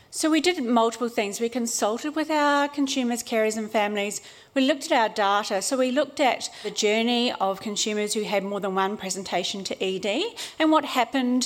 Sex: female